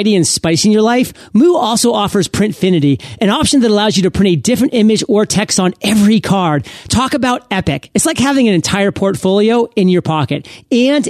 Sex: male